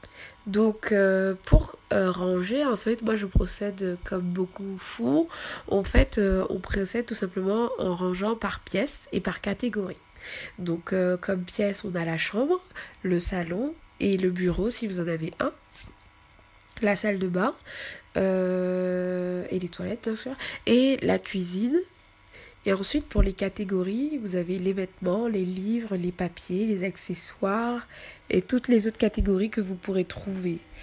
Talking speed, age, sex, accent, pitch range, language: 160 wpm, 20-39, female, French, 180-215 Hz, French